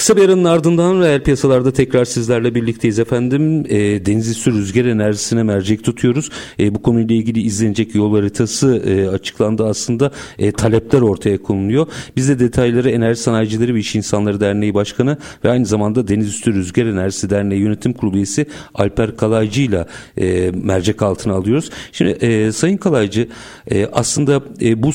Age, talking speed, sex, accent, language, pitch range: 50-69, 160 wpm, male, native, Turkish, 105-135 Hz